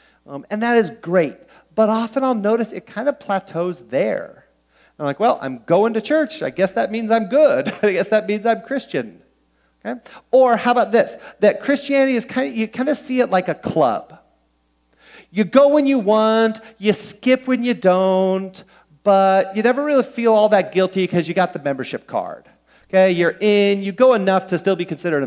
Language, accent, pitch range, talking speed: English, American, 145-220 Hz, 200 wpm